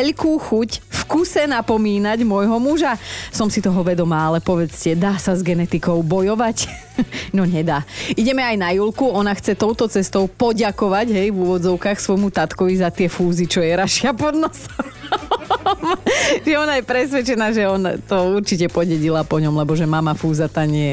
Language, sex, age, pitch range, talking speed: Slovak, female, 30-49, 180-235 Hz, 170 wpm